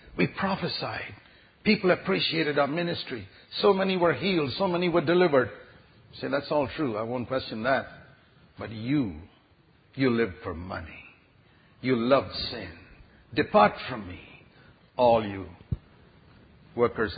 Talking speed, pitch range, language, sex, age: 135 wpm, 105-150 Hz, English, male, 60-79